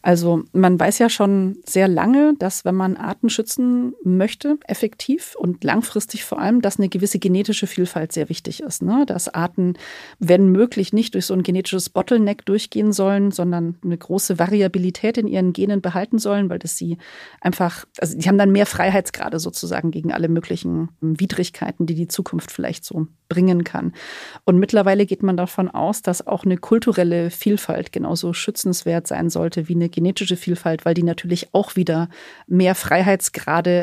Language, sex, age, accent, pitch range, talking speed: German, female, 40-59, German, 170-200 Hz, 170 wpm